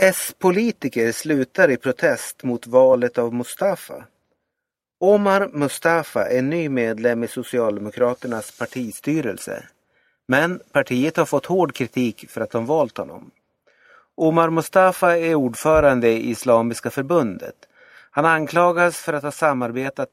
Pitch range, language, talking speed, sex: 120-160 Hz, Swedish, 120 wpm, male